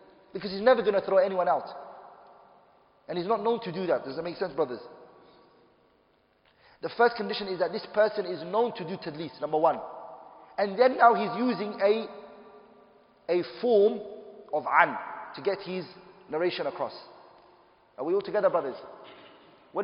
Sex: male